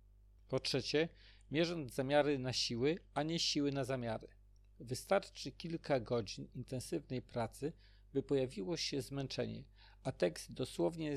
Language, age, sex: Polish, 50-69, male